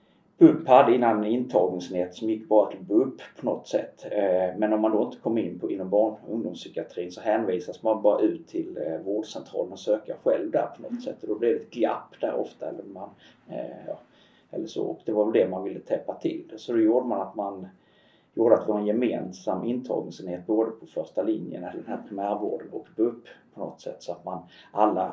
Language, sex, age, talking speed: Swedish, male, 30-49, 210 wpm